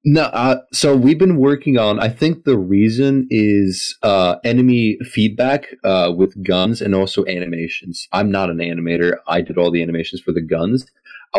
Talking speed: 180 wpm